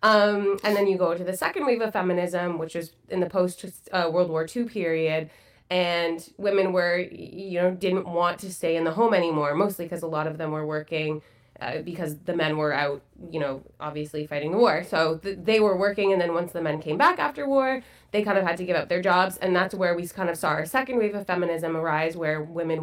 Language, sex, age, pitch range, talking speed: English, female, 20-39, 155-195 Hz, 240 wpm